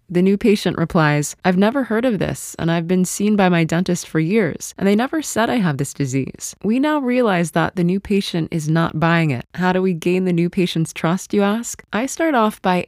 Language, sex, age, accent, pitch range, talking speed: English, female, 20-39, American, 165-210 Hz, 240 wpm